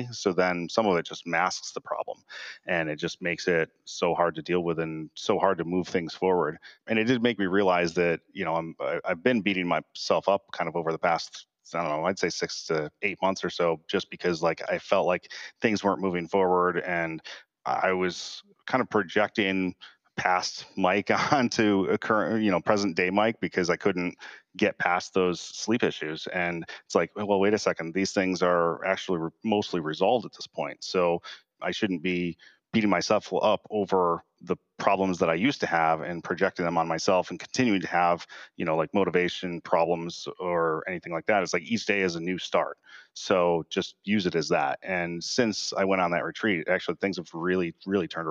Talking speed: 210 wpm